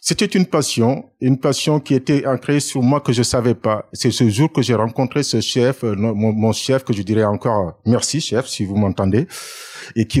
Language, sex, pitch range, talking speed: French, male, 110-135 Hz, 210 wpm